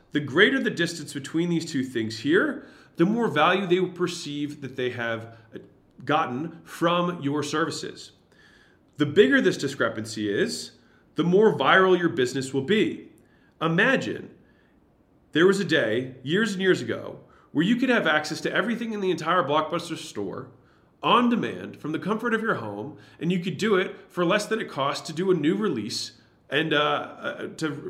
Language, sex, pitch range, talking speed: English, male, 145-190 Hz, 175 wpm